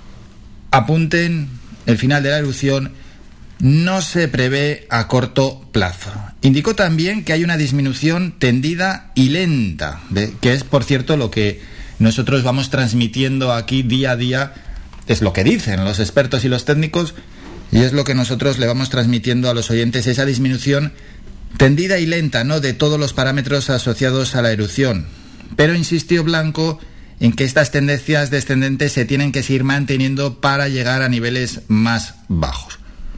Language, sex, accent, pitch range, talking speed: Spanish, male, Spanish, 115-145 Hz, 155 wpm